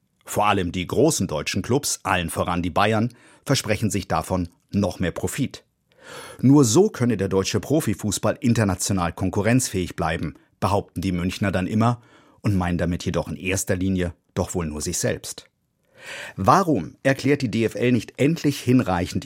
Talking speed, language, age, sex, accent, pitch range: 155 wpm, German, 50-69, male, German, 95-125 Hz